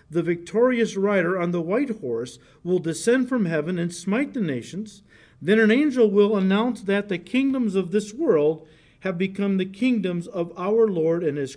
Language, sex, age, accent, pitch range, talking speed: English, male, 50-69, American, 145-205 Hz, 180 wpm